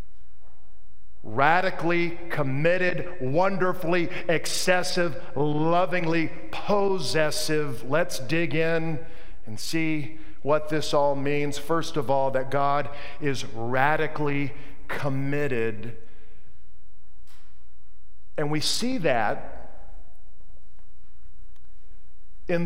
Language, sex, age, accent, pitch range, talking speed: English, male, 50-69, American, 120-165 Hz, 75 wpm